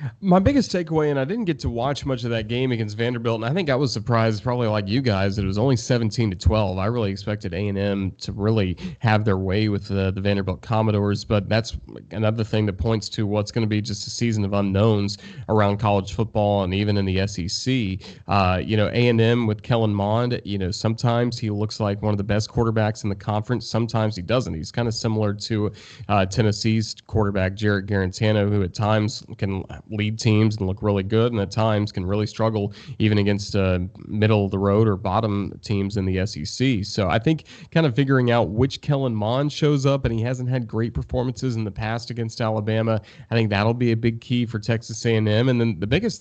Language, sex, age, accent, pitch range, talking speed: English, male, 30-49, American, 100-120 Hz, 220 wpm